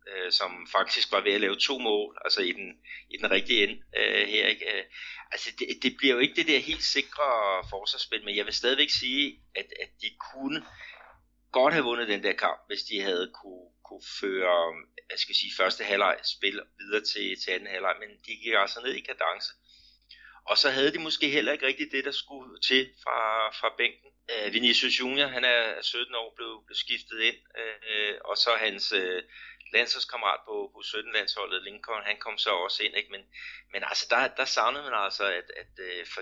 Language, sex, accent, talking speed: Danish, male, native, 200 wpm